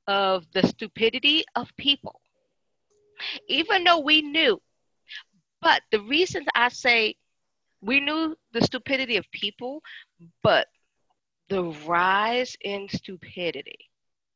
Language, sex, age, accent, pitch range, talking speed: English, female, 40-59, American, 200-290 Hz, 105 wpm